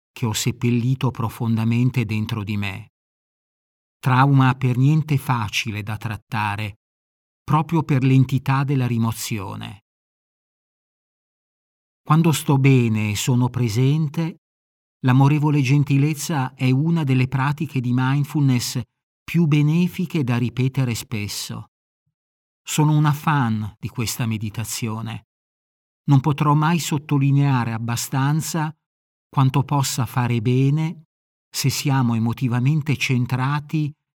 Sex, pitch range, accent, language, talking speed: male, 115-145 Hz, native, Italian, 100 wpm